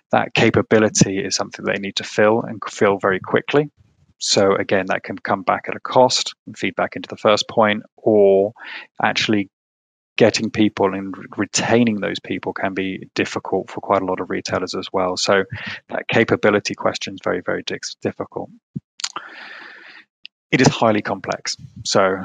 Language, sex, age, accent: English, male, 20-39, British